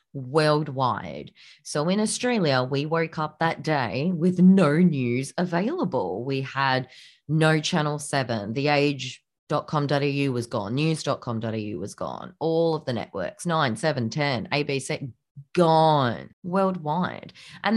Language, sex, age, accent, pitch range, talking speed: English, female, 30-49, Australian, 130-170 Hz, 120 wpm